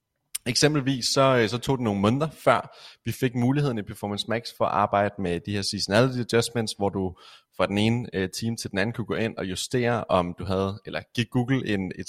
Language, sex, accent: Danish, male, native